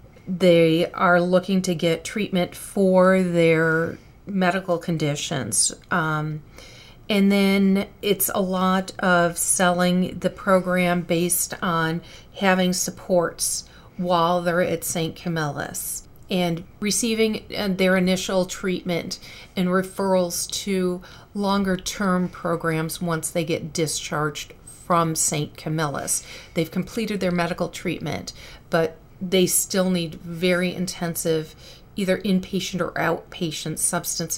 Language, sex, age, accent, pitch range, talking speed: English, female, 40-59, American, 165-185 Hz, 110 wpm